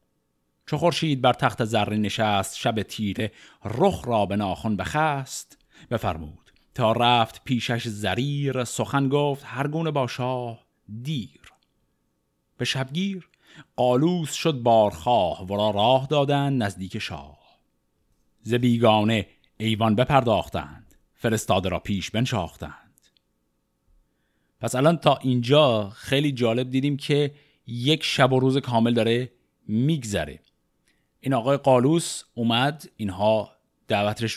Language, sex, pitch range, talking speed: Persian, male, 105-135 Hz, 110 wpm